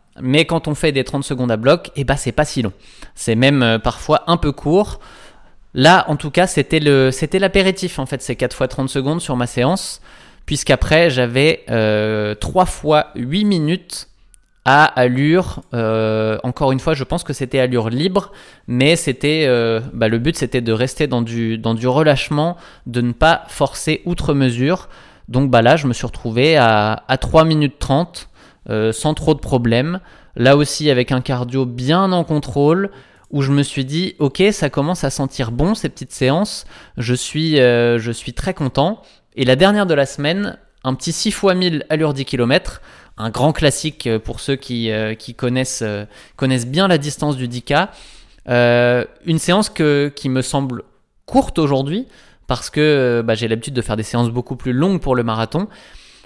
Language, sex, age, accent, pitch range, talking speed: French, male, 20-39, French, 125-155 Hz, 195 wpm